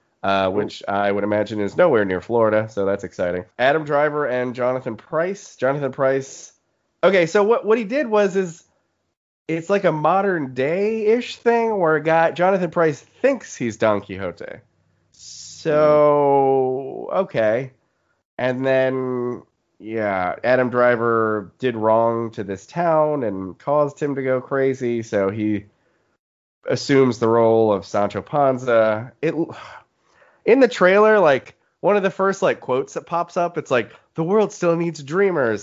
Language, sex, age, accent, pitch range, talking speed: English, male, 30-49, American, 115-180 Hz, 145 wpm